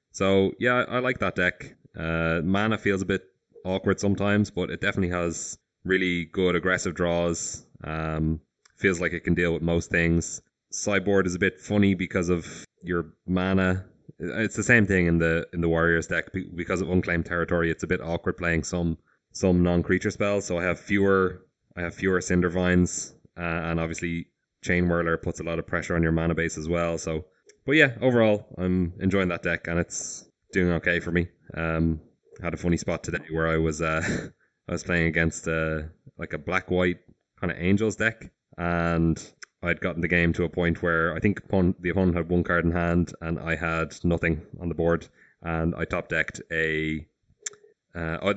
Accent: Irish